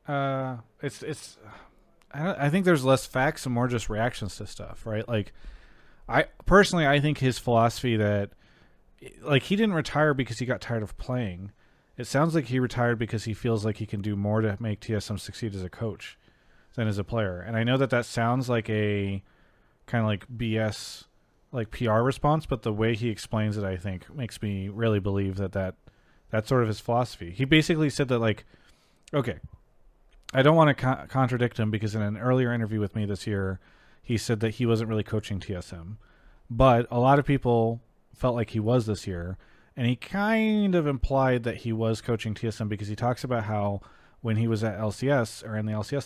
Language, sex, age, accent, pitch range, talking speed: English, male, 30-49, American, 105-125 Hz, 205 wpm